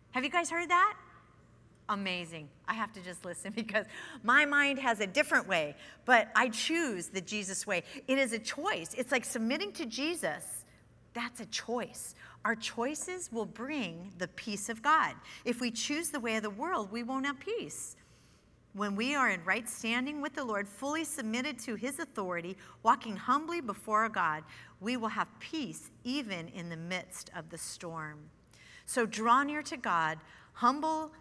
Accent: American